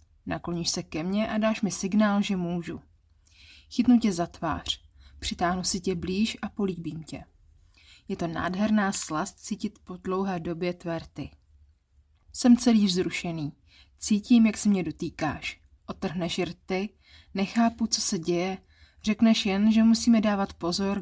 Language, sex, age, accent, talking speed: Czech, female, 20-39, native, 145 wpm